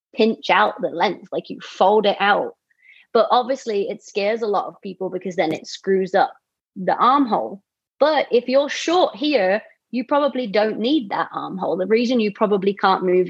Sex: female